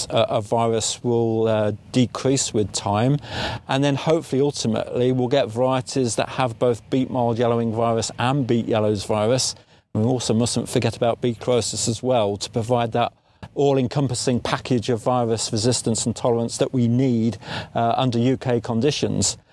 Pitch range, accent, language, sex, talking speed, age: 115-130 Hz, British, English, male, 160 wpm, 50-69